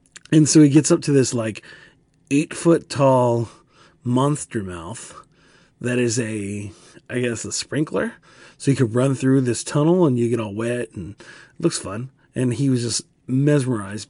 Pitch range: 115-140 Hz